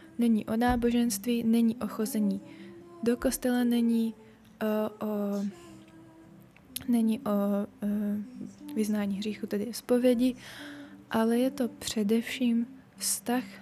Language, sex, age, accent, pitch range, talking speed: Czech, female, 20-39, native, 210-240 Hz, 100 wpm